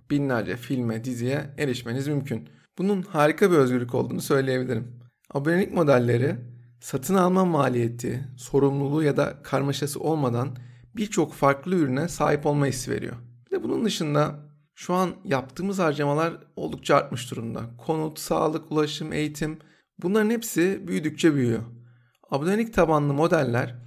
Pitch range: 125-160 Hz